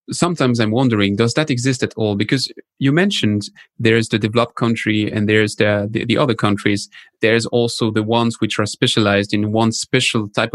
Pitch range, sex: 110-130 Hz, male